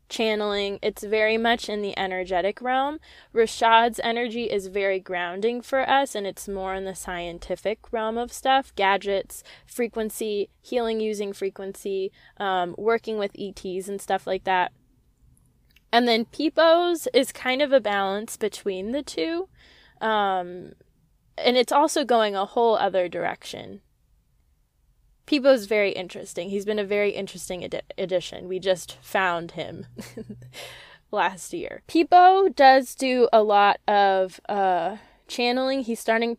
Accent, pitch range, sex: American, 190-235 Hz, female